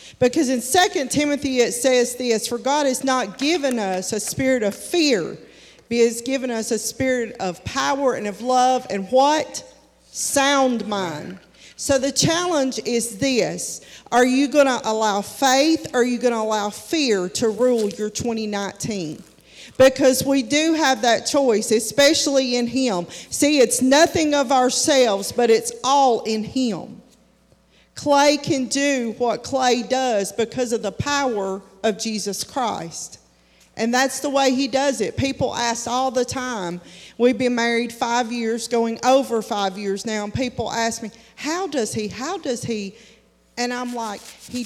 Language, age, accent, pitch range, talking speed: English, 40-59, American, 220-265 Hz, 165 wpm